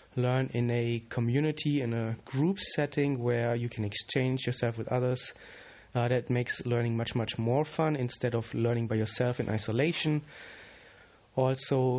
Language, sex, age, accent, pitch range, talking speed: English, male, 30-49, German, 115-135 Hz, 155 wpm